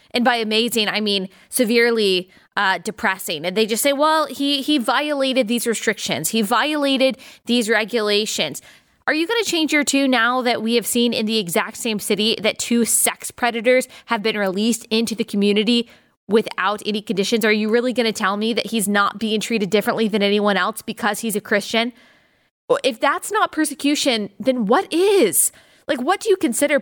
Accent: American